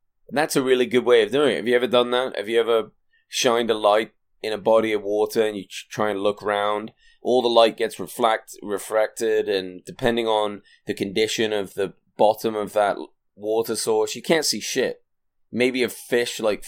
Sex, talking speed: male, 205 wpm